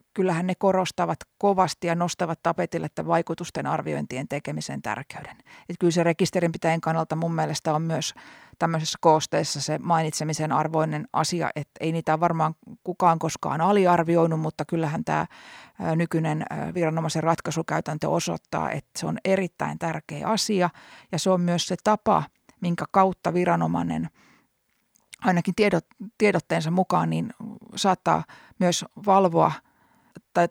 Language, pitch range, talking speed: Finnish, 160-185 Hz, 130 wpm